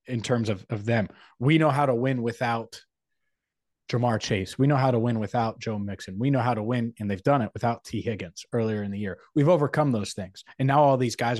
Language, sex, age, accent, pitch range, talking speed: English, male, 20-39, American, 115-135 Hz, 240 wpm